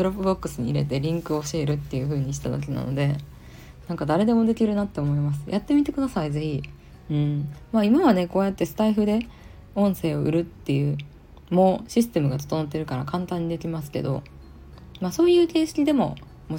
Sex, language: female, Japanese